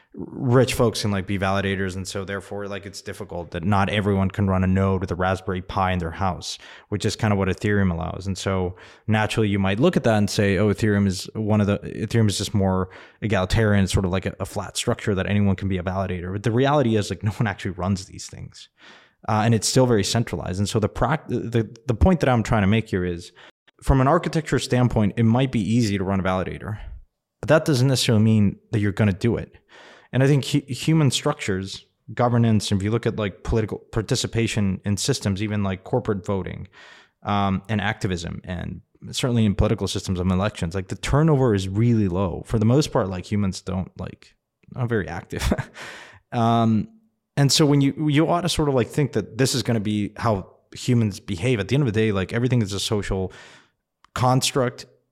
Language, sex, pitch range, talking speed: English, male, 95-120 Hz, 220 wpm